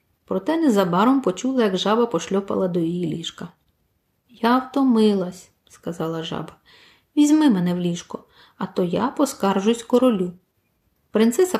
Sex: female